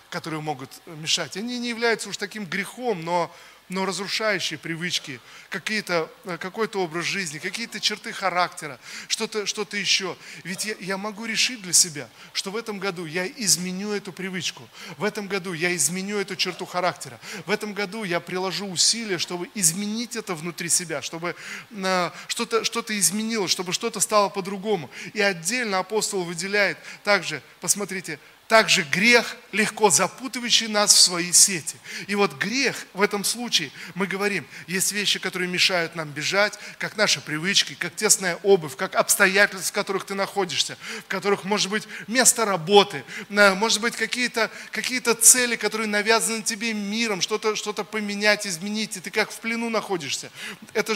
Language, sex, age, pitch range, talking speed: Russian, male, 20-39, 180-215 Hz, 150 wpm